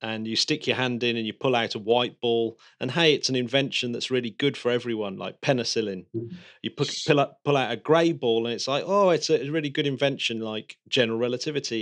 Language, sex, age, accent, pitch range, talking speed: English, male, 30-49, British, 115-145 Hz, 225 wpm